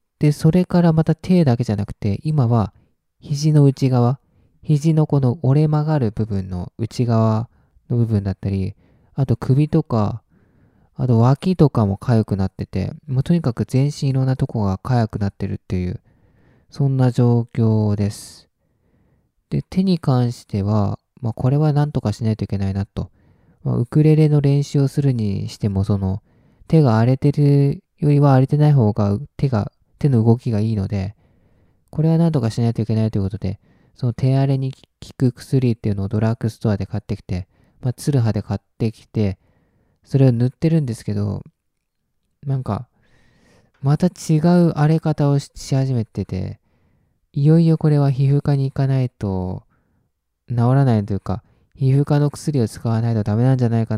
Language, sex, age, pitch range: Japanese, male, 20-39, 105-140 Hz